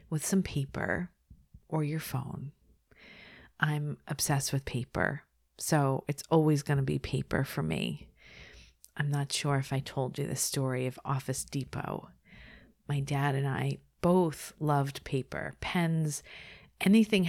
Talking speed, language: 140 wpm, English